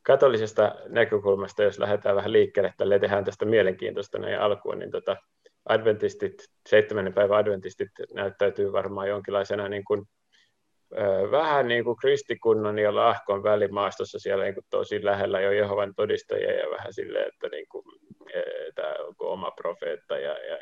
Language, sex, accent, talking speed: Finnish, male, native, 145 wpm